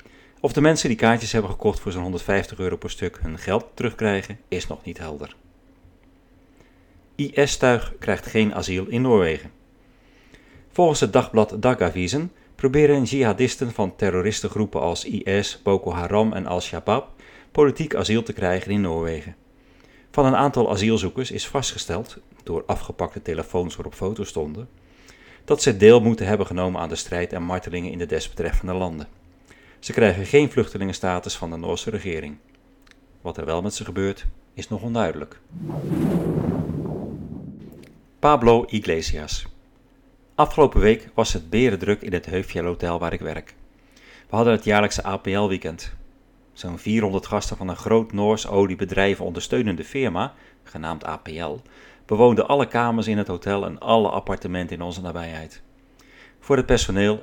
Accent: Dutch